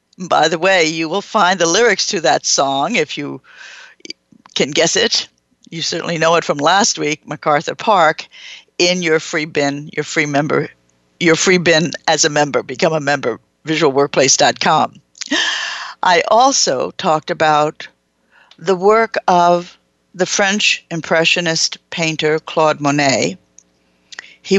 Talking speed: 135 wpm